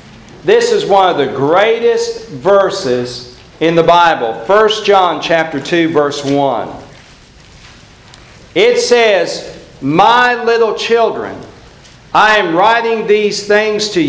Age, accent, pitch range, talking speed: 50-69, American, 155-210 Hz, 115 wpm